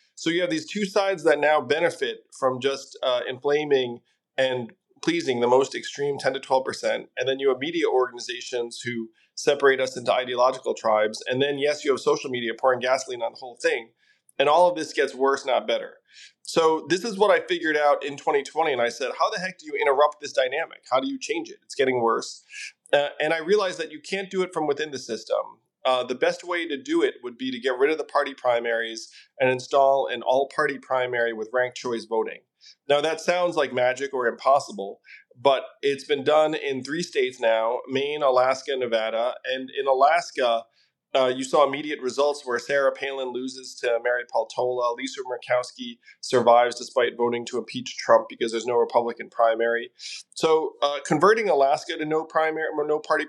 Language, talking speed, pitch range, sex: English, 195 wpm, 125-205 Hz, male